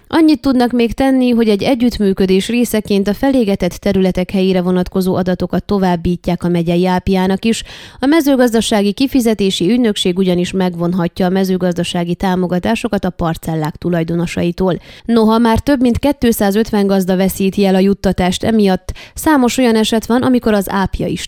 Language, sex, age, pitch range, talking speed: Hungarian, female, 20-39, 180-225 Hz, 140 wpm